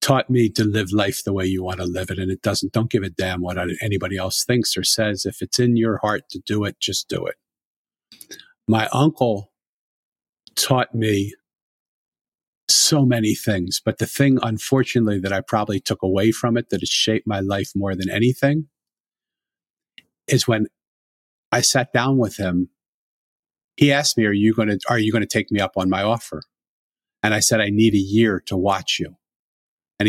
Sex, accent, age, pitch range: male, American, 50-69, 95-110 Hz